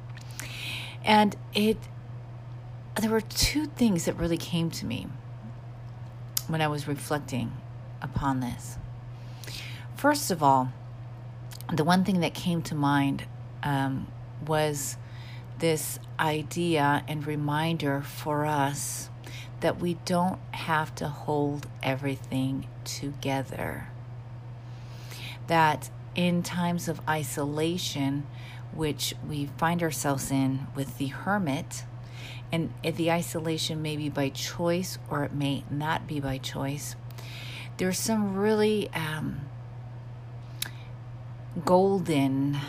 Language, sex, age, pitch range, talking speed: English, female, 40-59, 120-155 Hz, 105 wpm